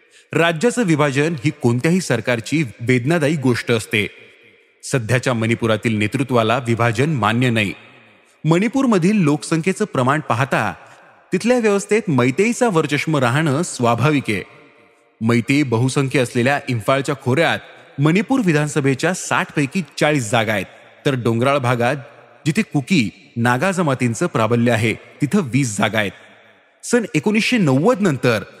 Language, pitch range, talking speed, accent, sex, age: Marathi, 120-165 Hz, 110 wpm, native, male, 30-49